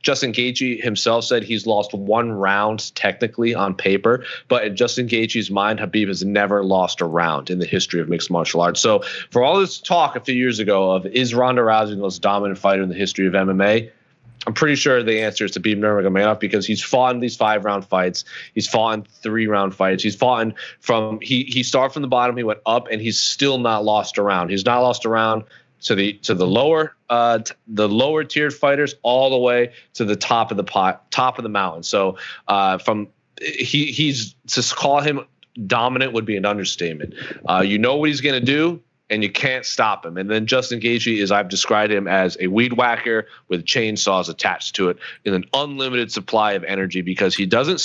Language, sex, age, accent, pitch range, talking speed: English, male, 30-49, American, 100-125 Hz, 215 wpm